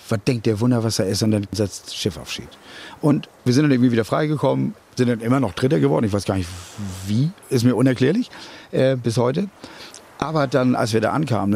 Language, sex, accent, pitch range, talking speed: German, male, German, 115-160 Hz, 230 wpm